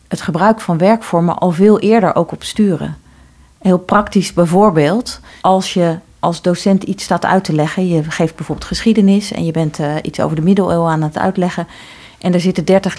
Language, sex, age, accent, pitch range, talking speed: Dutch, female, 40-59, Dutch, 160-195 Hz, 185 wpm